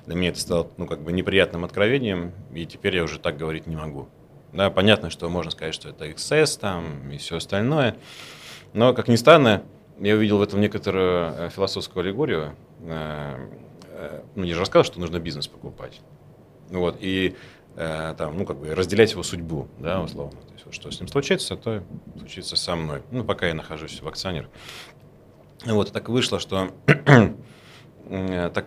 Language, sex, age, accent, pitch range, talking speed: Russian, male, 30-49, native, 85-110 Hz, 145 wpm